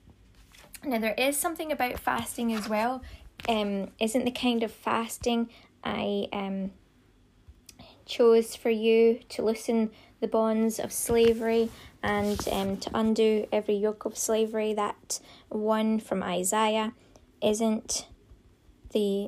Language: English